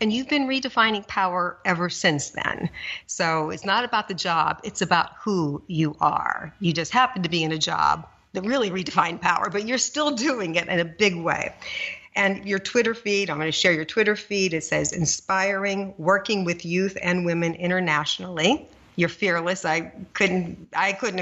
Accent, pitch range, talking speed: American, 160-200 Hz, 185 wpm